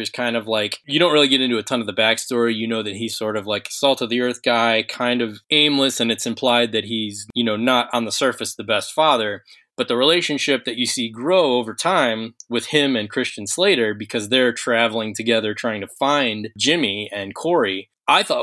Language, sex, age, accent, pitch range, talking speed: English, male, 20-39, American, 110-130 Hz, 230 wpm